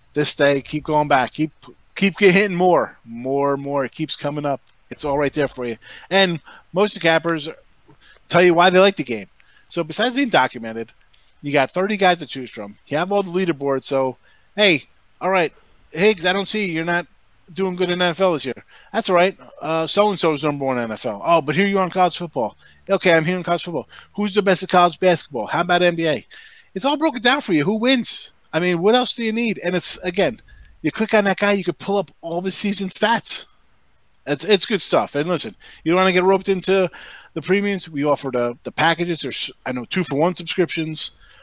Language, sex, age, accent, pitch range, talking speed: English, male, 30-49, American, 145-195 Hz, 235 wpm